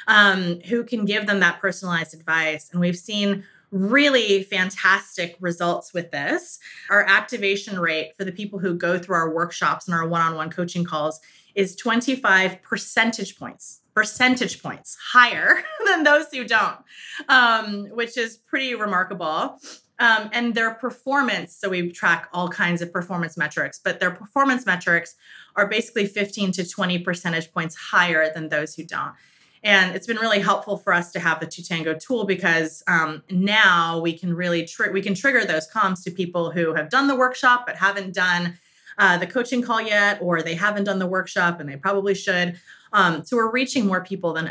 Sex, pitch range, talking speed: female, 165-215 Hz, 180 wpm